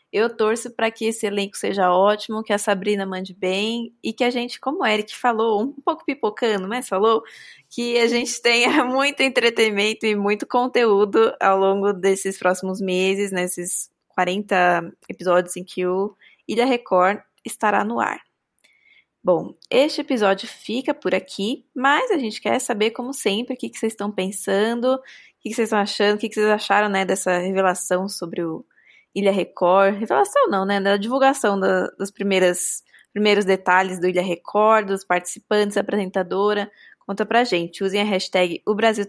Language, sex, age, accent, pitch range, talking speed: Portuguese, female, 20-39, Brazilian, 190-230 Hz, 170 wpm